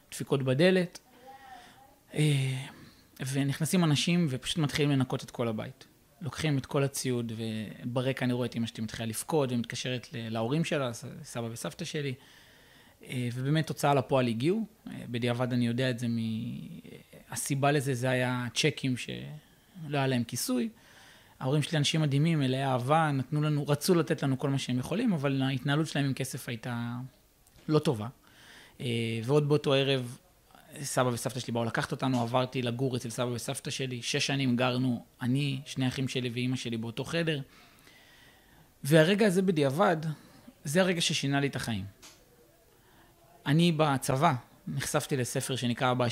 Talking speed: 140 wpm